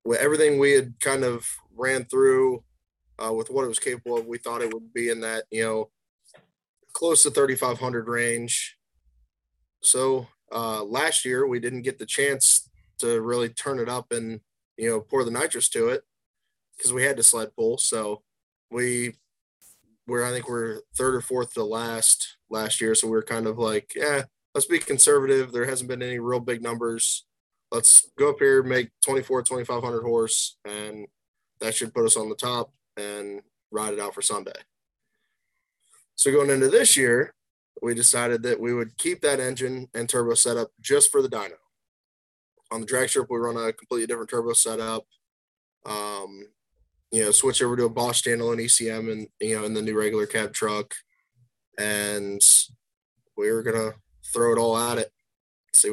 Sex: male